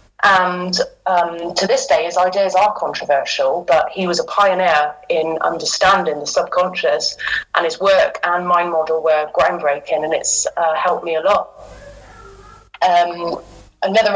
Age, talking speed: 30-49, 150 wpm